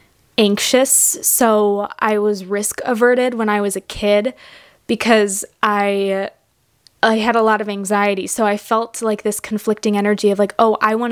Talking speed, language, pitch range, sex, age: 165 wpm, English, 205-230 Hz, female, 20-39